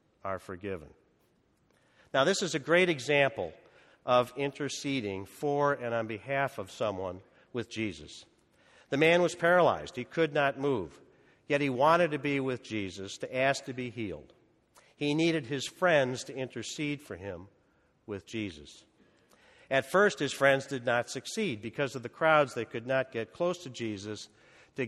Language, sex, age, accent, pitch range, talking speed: English, male, 50-69, American, 115-150 Hz, 160 wpm